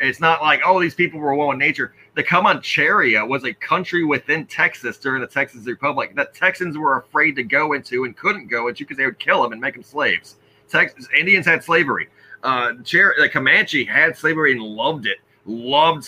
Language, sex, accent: English, male, American